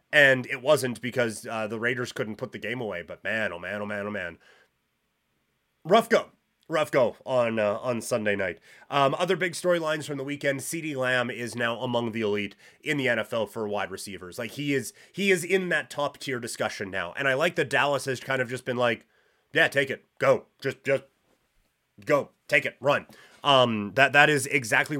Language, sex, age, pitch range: English, male, 30-49, 115-145 Hz